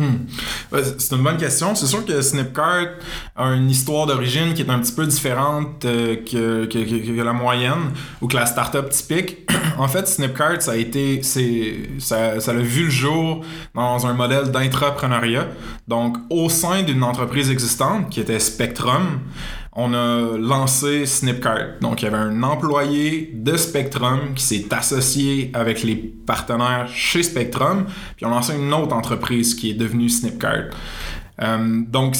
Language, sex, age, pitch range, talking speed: English, male, 20-39, 120-150 Hz, 165 wpm